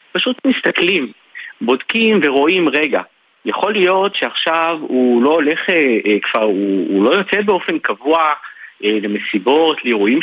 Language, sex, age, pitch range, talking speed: Hebrew, male, 50-69, 130-210 Hz, 110 wpm